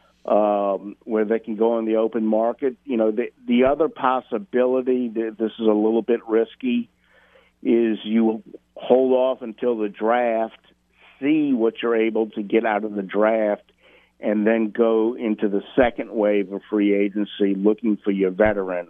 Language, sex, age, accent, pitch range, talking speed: English, male, 50-69, American, 105-120 Hz, 165 wpm